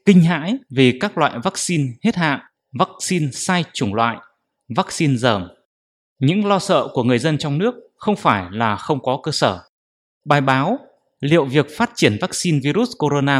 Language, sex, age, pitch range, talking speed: English, male, 20-39, 130-180 Hz, 170 wpm